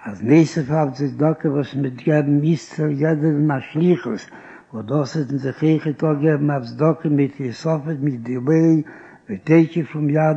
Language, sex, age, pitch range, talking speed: Hebrew, male, 60-79, 140-160 Hz, 185 wpm